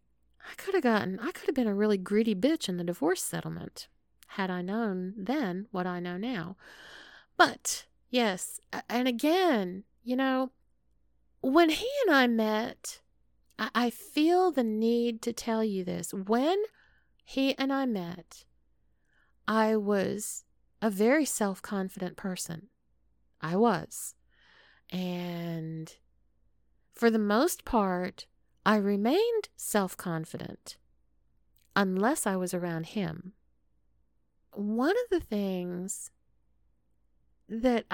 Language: English